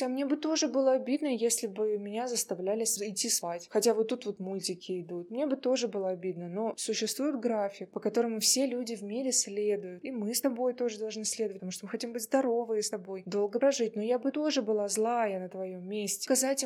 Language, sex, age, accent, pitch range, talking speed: Russian, female, 20-39, native, 195-235 Hz, 215 wpm